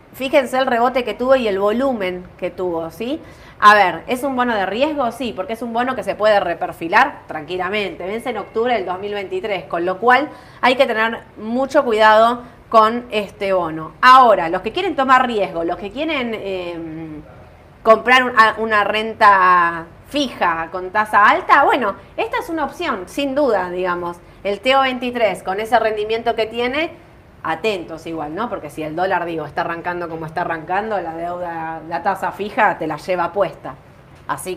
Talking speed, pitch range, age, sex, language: 175 wpm, 180-255 Hz, 20-39, female, Spanish